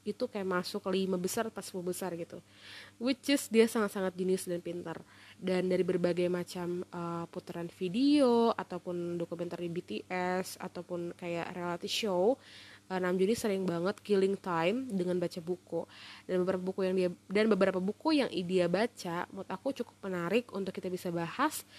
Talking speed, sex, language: 160 wpm, female, Indonesian